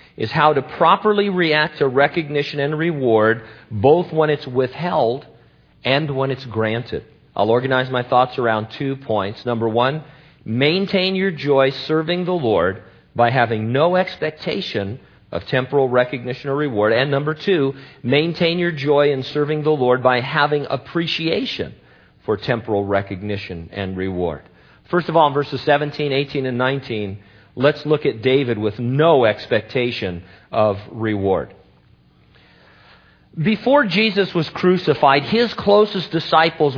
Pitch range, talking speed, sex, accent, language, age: 120-160 Hz, 135 wpm, male, American, English, 50-69